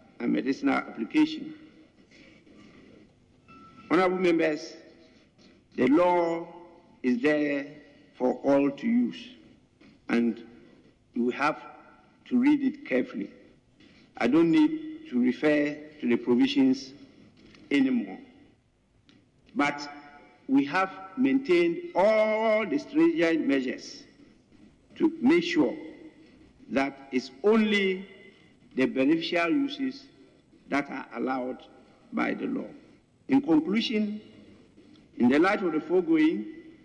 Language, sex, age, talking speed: English, male, 50-69, 100 wpm